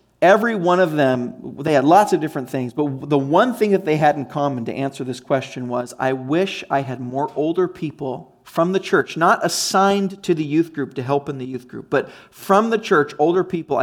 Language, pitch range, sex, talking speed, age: English, 145-215 Hz, male, 225 wpm, 40-59